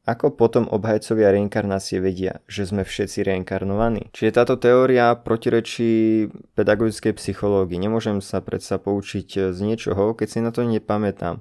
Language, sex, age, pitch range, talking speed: Slovak, male, 20-39, 100-120 Hz, 135 wpm